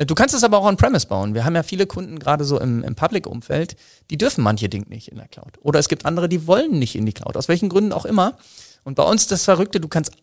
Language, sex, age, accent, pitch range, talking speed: German, male, 40-59, German, 120-155 Hz, 275 wpm